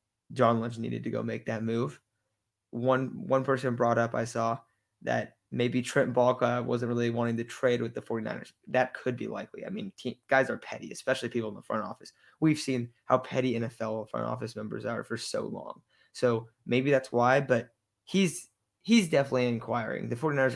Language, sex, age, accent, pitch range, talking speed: English, male, 20-39, American, 120-130 Hz, 190 wpm